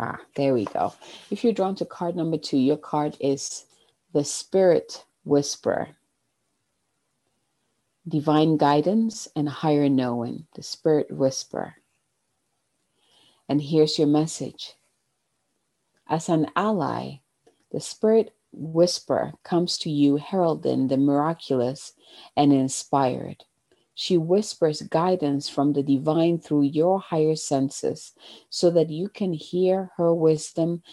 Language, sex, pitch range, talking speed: English, female, 145-175 Hz, 115 wpm